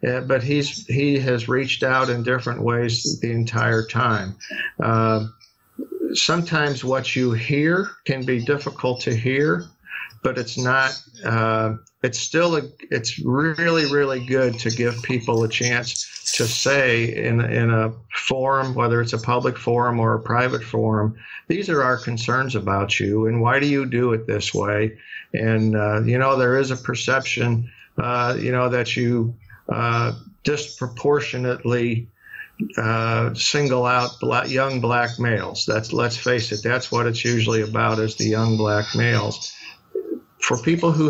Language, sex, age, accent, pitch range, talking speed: English, male, 50-69, American, 115-135 Hz, 155 wpm